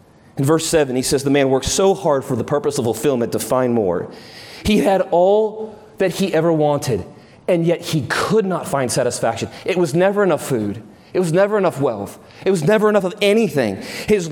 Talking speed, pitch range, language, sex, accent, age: 205 wpm, 175-240 Hz, English, male, American, 30-49